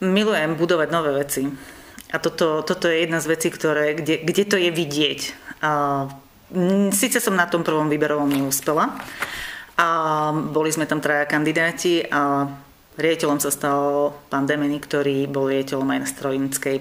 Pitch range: 145-170 Hz